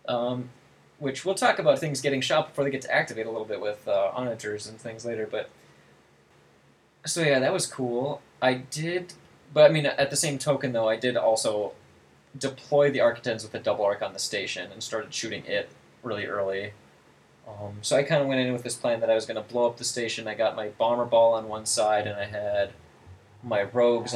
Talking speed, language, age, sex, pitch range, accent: 220 wpm, English, 20-39, male, 105-135 Hz, American